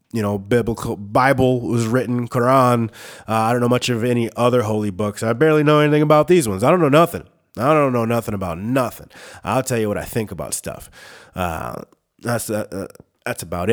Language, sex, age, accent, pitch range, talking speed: English, male, 30-49, American, 115-150 Hz, 205 wpm